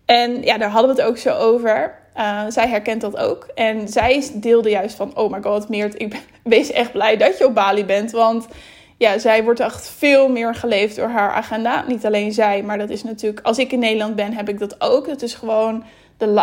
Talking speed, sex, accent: 235 wpm, female, Dutch